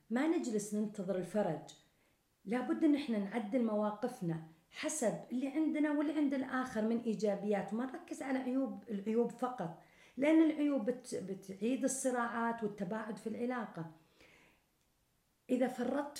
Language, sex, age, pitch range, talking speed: Arabic, female, 50-69, 195-245 Hz, 115 wpm